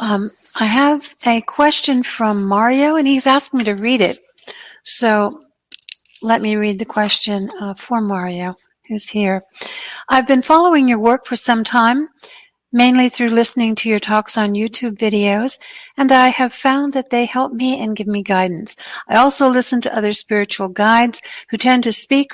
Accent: American